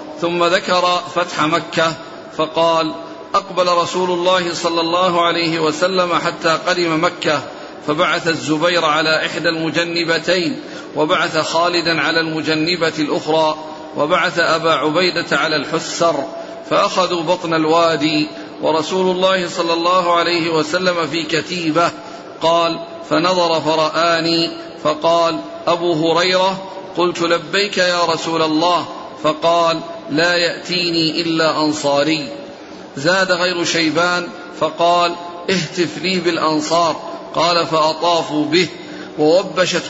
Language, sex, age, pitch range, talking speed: Arabic, male, 40-59, 160-180 Hz, 100 wpm